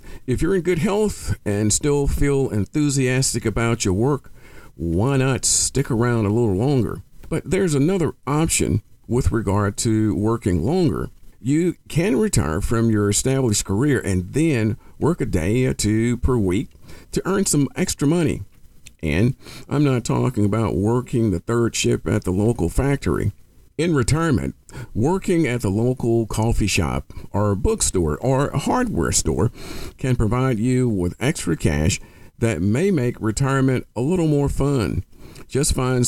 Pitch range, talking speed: 105-140 Hz, 155 wpm